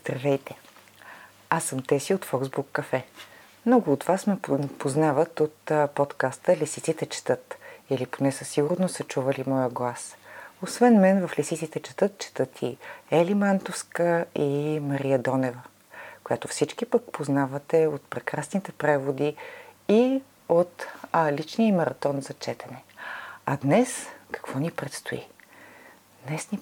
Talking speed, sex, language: 130 wpm, female, Bulgarian